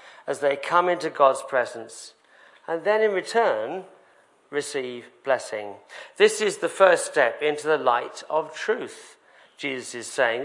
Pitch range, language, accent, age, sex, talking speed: 140-200 Hz, English, British, 50-69, male, 145 wpm